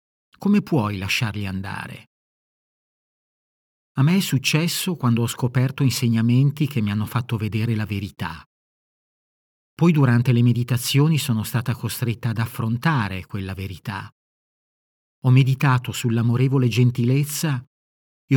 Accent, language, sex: native, Italian, male